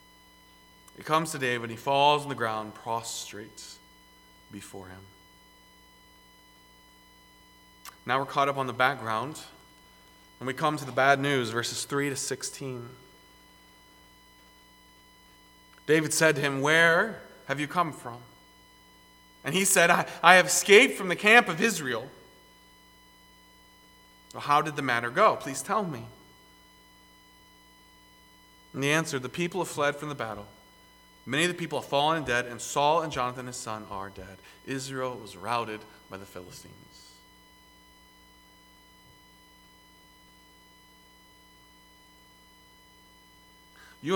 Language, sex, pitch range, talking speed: English, male, 100-140 Hz, 125 wpm